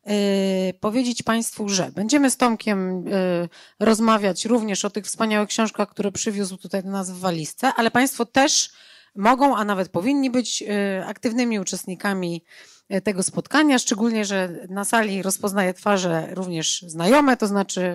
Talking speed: 135 wpm